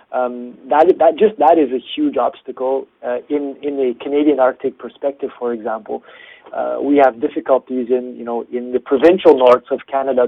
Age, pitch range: 30-49, 125-155 Hz